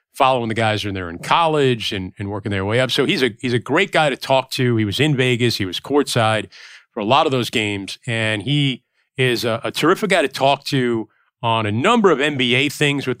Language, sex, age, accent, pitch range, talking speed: English, male, 40-59, American, 110-145 Hz, 240 wpm